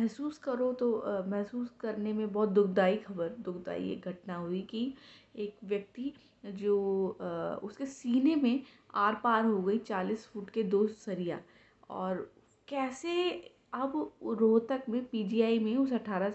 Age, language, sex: 20-39, Hindi, female